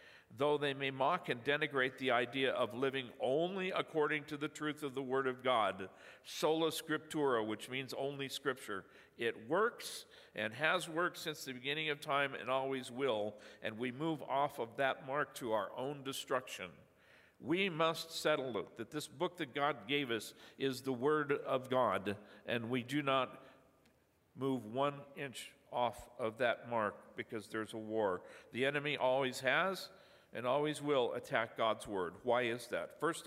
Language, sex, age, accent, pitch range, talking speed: English, male, 50-69, American, 125-150 Hz, 170 wpm